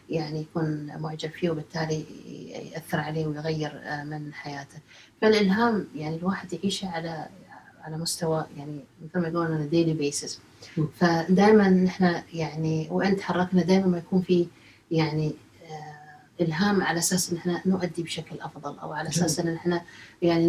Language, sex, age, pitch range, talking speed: Arabic, female, 30-49, 155-195 Hz, 140 wpm